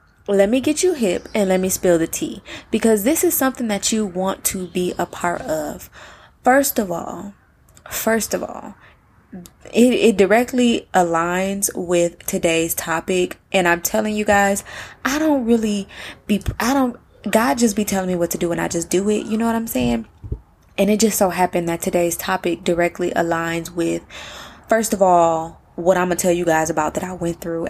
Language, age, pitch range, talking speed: English, 20-39, 170-215 Hz, 195 wpm